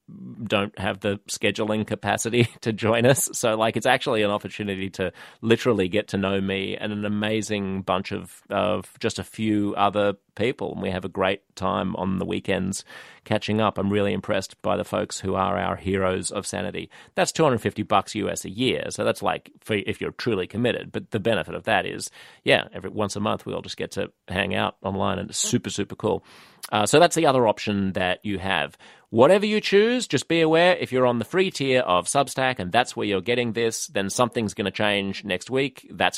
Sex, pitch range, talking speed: male, 95-125 Hz, 215 wpm